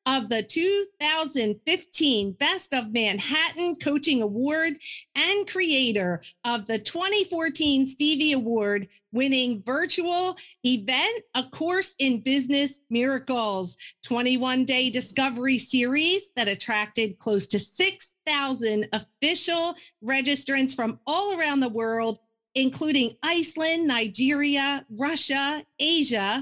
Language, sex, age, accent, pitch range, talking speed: English, female, 40-59, American, 240-330 Hz, 95 wpm